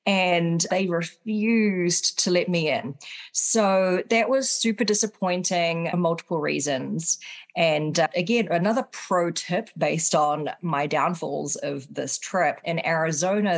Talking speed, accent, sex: 130 wpm, Australian, female